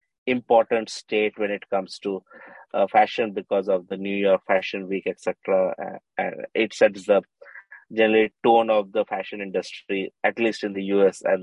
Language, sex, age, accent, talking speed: English, male, 20-39, Indian, 175 wpm